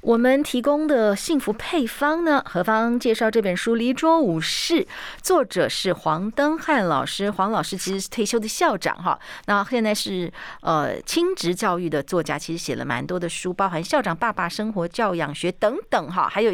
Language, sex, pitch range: Chinese, female, 175-245 Hz